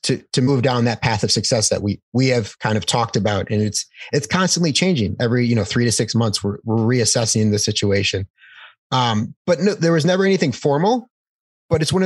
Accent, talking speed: American, 220 wpm